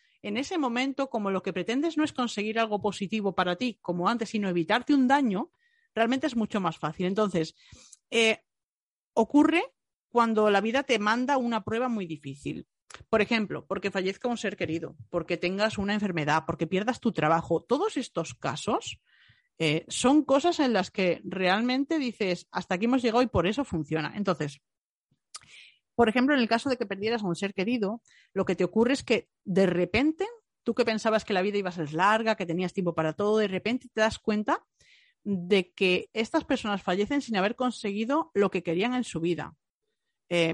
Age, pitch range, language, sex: 40-59, 180-245 Hz, Spanish, female